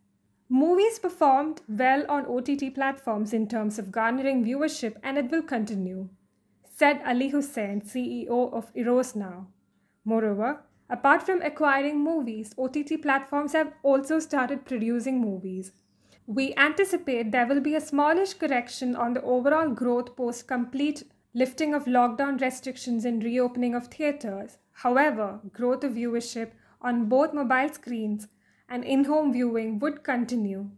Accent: Indian